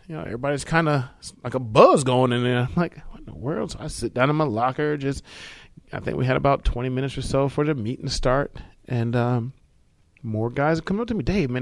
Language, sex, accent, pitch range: English, male, American, 110-155 Hz